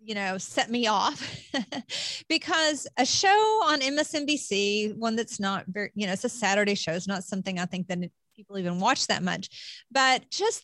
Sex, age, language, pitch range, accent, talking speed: female, 40-59, English, 195-245 Hz, American, 185 wpm